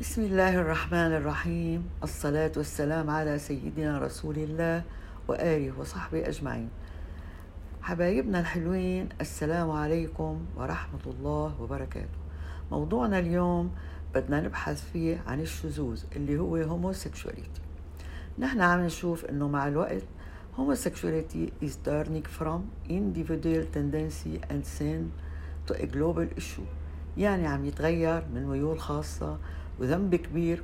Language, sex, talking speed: Arabic, female, 110 wpm